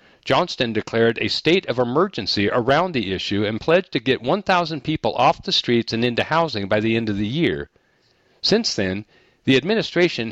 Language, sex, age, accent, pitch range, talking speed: English, male, 50-69, American, 110-155 Hz, 180 wpm